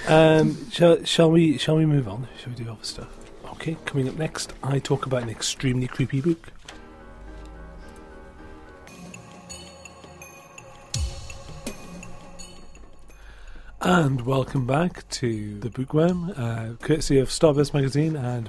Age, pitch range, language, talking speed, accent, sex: 40-59, 110-155 Hz, English, 115 wpm, British, male